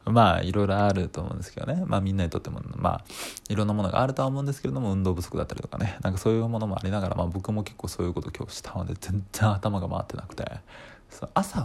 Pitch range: 95-115 Hz